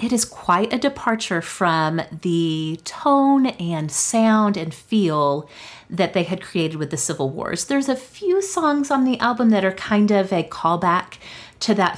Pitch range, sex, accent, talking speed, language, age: 160-205 Hz, female, American, 175 wpm, English, 30-49